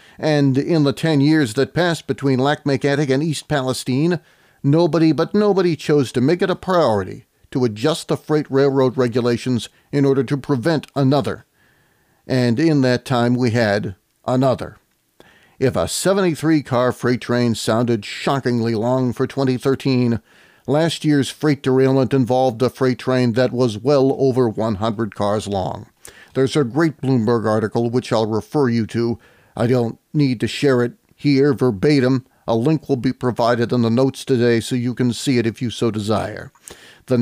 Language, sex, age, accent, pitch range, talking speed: English, male, 40-59, American, 120-145 Hz, 165 wpm